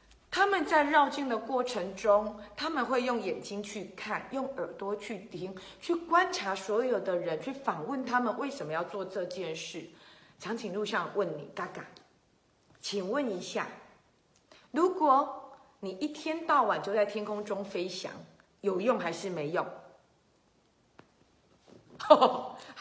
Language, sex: Chinese, female